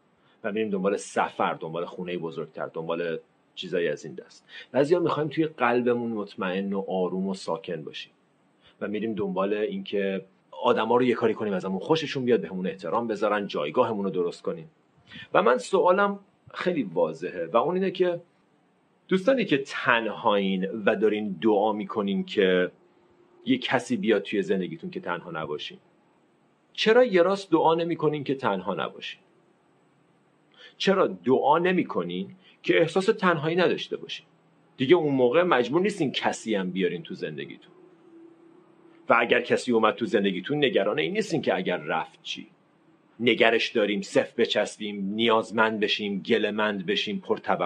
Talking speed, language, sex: 145 wpm, Persian, male